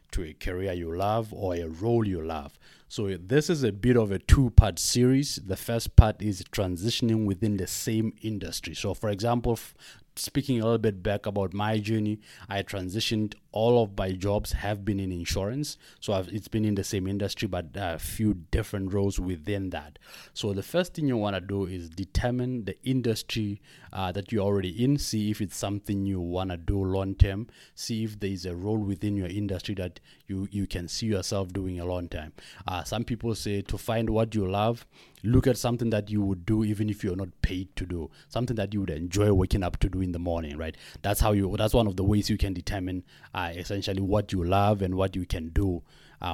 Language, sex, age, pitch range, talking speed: English, male, 30-49, 95-110 Hz, 215 wpm